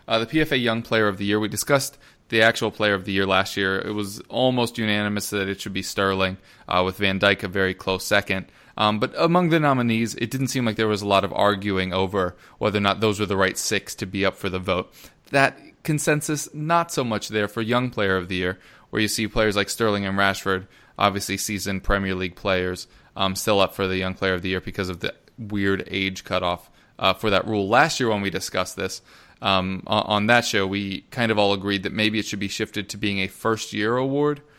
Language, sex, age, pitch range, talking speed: English, male, 20-39, 95-110 Hz, 240 wpm